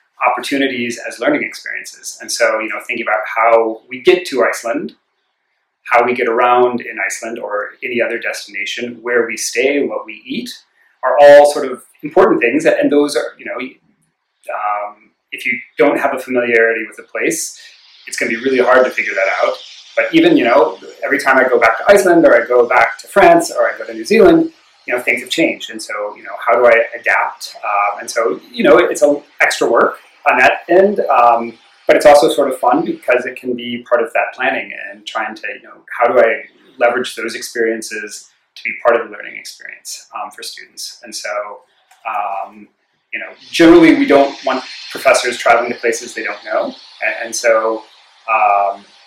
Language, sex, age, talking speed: English, male, 30-49, 200 wpm